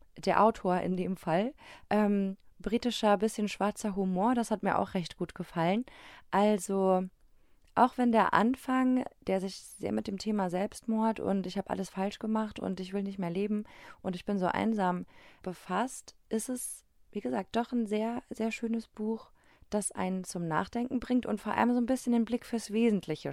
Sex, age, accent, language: female, 20-39, German, German